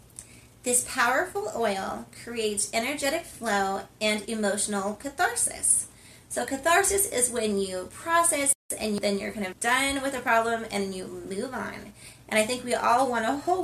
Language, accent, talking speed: English, American, 160 wpm